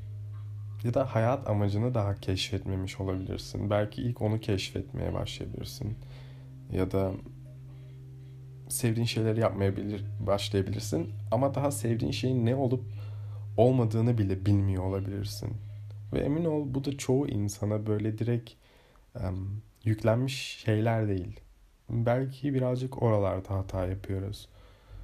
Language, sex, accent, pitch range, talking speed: Turkish, male, native, 105-125 Hz, 110 wpm